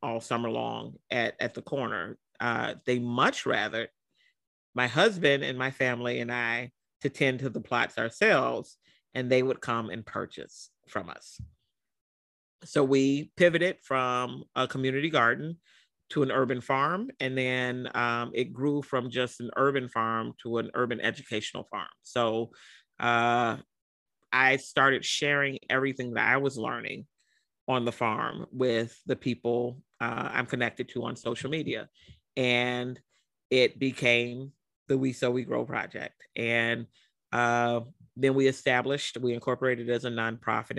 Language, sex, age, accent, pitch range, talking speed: English, male, 40-59, American, 120-135 Hz, 145 wpm